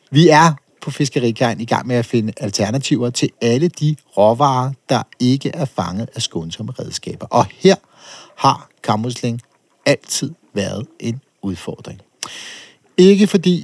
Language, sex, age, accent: Danish, male, 60-79, native